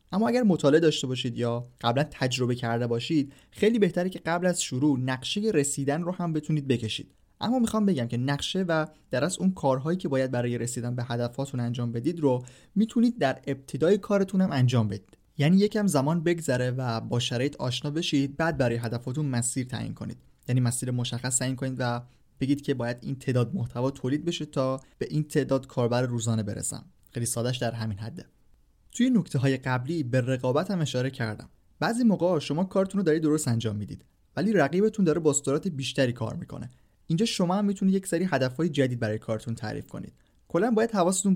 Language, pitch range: Persian, 120-165 Hz